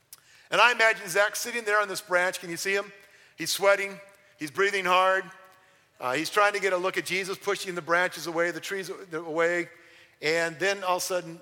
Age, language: 50-69, English